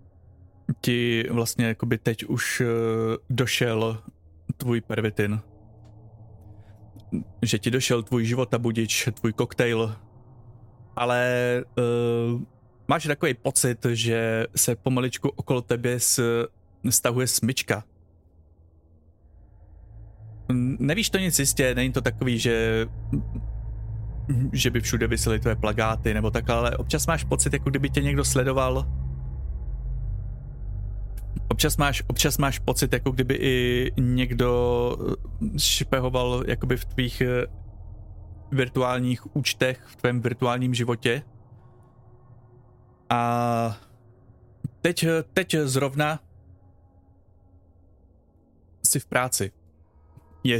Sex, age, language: male, 20-39, Czech